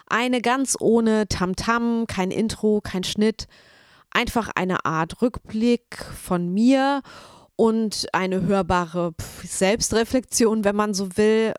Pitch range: 185-220 Hz